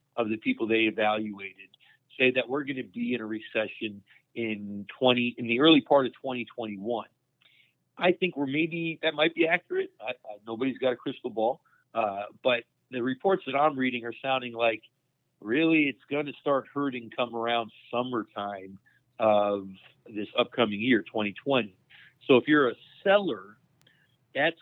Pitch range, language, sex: 115-140 Hz, English, male